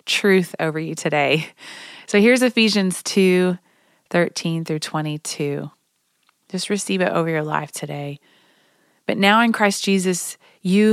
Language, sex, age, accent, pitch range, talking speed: English, female, 30-49, American, 160-195 Hz, 130 wpm